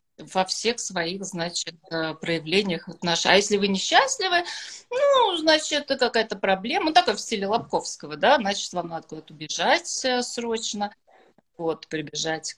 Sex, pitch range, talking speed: female, 175-245 Hz, 135 wpm